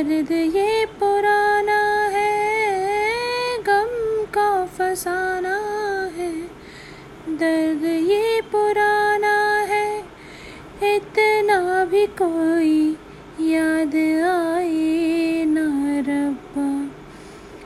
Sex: female